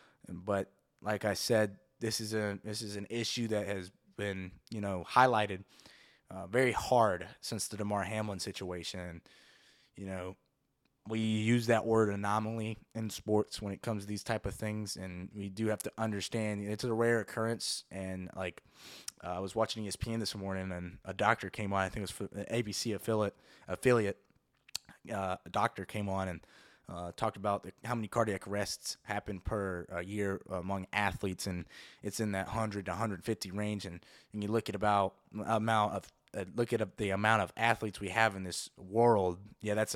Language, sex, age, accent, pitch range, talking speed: English, male, 20-39, American, 95-110 Hz, 190 wpm